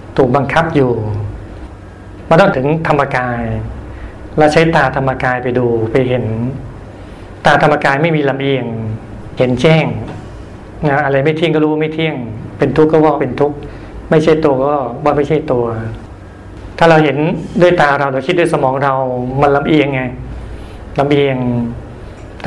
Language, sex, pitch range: Thai, male, 110-150 Hz